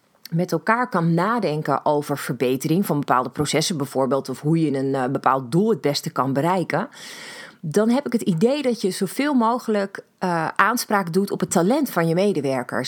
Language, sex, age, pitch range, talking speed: Dutch, female, 30-49, 165-225 Hz, 175 wpm